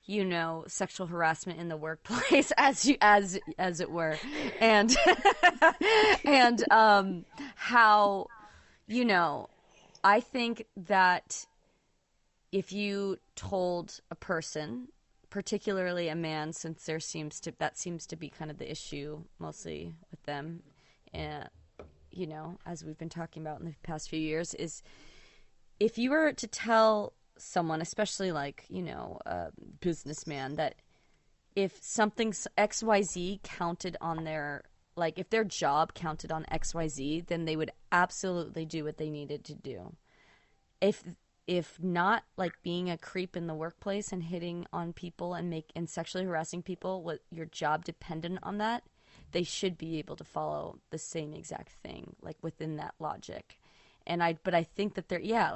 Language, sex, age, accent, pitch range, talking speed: English, female, 20-39, American, 160-200 Hz, 155 wpm